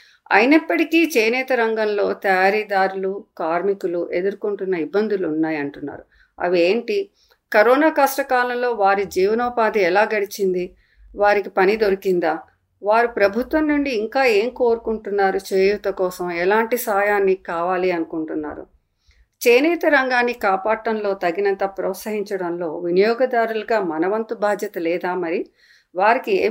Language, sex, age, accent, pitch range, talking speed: Telugu, female, 50-69, native, 185-235 Hz, 95 wpm